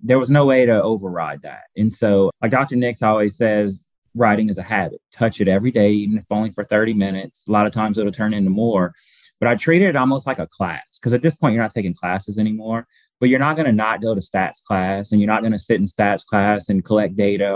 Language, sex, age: English, male, 20-39